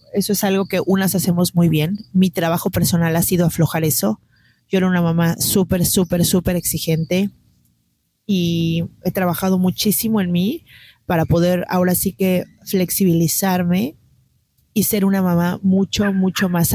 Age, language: 30-49, Spanish